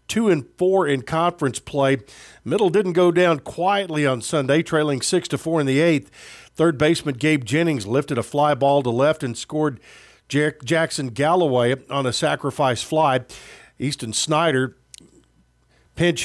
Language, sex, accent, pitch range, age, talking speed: English, male, American, 130-160 Hz, 50-69, 140 wpm